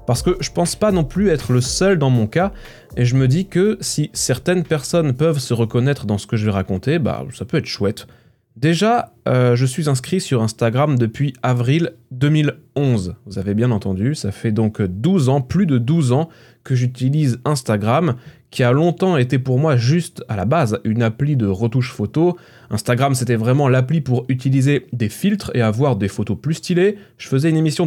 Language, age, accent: French, 20-39, French